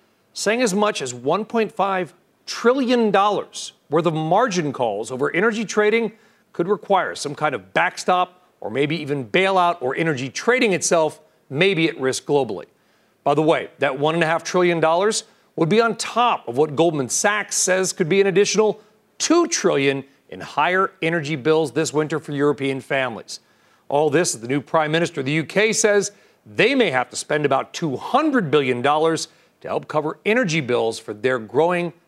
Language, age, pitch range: English, 40-59, 155-205 Hz